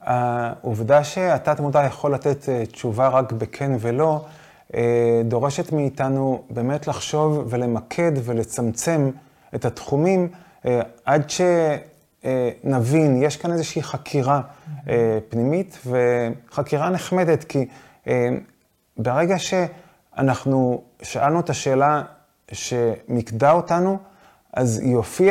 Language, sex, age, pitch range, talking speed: Hebrew, male, 30-49, 120-160 Hz, 85 wpm